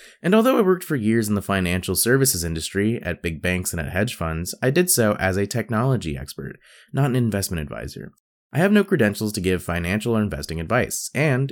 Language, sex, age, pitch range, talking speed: English, male, 20-39, 90-125 Hz, 210 wpm